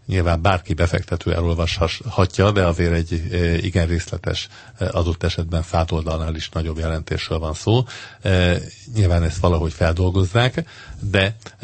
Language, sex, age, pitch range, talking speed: Hungarian, male, 50-69, 85-100 Hz, 115 wpm